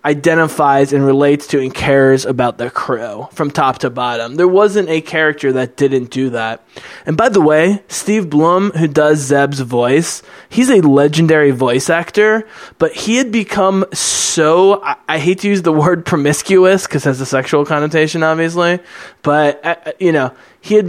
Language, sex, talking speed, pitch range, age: English, male, 170 wpm, 140-175 Hz, 20-39